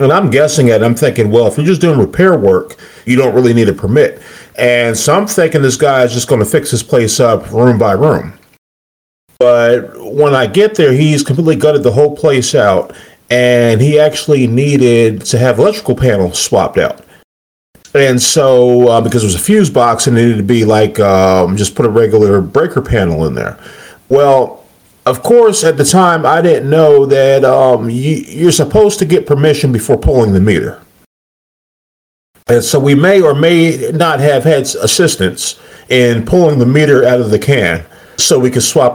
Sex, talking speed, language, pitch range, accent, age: male, 195 wpm, English, 115-150 Hz, American, 40-59